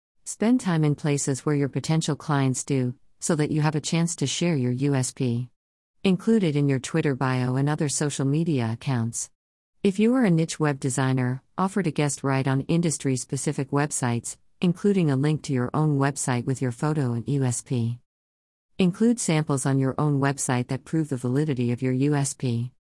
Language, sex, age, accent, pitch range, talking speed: English, female, 50-69, American, 130-155 Hz, 180 wpm